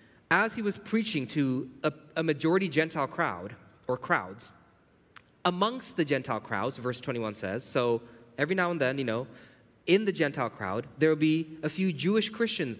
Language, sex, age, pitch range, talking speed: English, male, 20-39, 120-165 Hz, 170 wpm